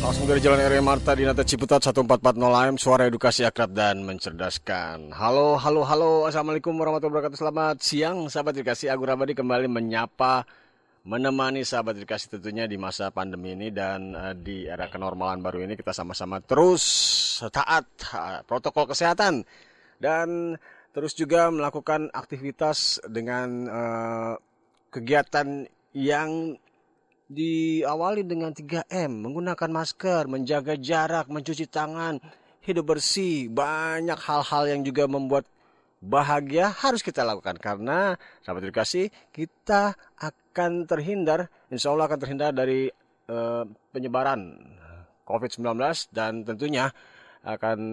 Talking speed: 120 wpm